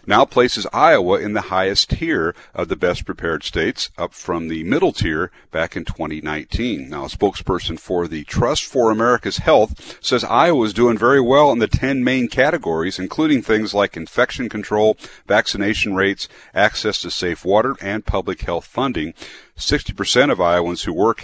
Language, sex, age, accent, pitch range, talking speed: English, male, 50-69, American, 90-115 Hz, 170 wpm